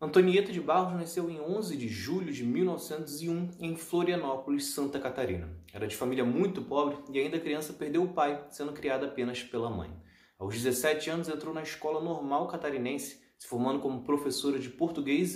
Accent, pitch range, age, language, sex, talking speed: Brazilian, 140-180 Hz, 20-39, Portuguese, male, 170 wpm